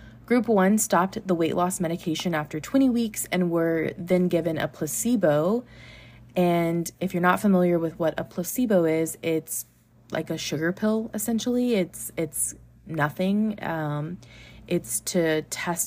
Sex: female